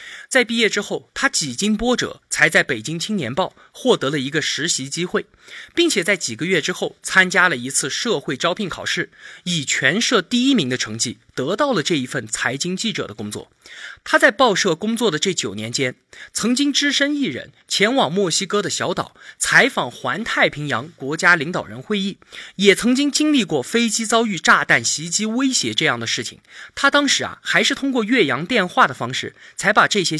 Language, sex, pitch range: Chinese, male, 150-245 Hz